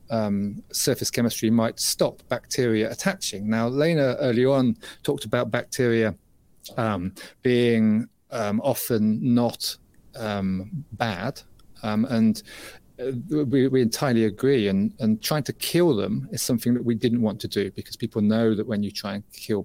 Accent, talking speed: British, 155 wpm